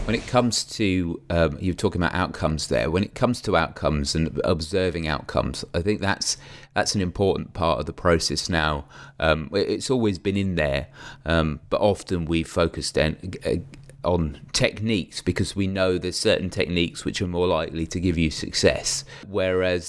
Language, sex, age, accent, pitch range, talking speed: English, male, 30-49, British, 85-105 Hz, 175 wpm